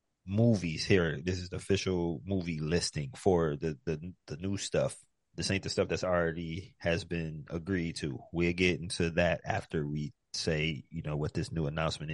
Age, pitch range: 30-49, 80-95 Hz